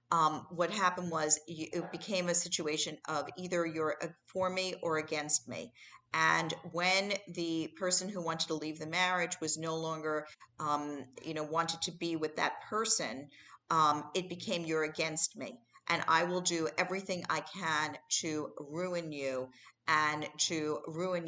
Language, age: English, 40-59